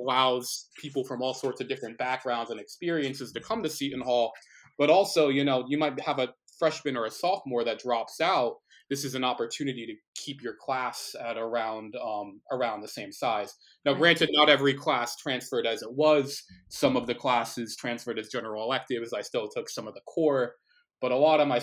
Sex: male